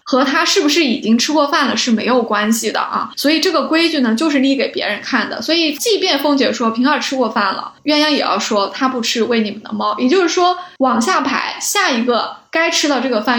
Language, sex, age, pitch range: Chinese, female, 10-29, 230-290 Hz